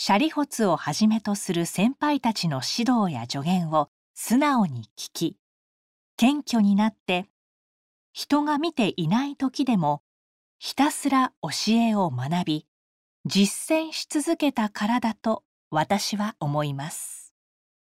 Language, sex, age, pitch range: Japanese, female, 40-59, 165-250 Hz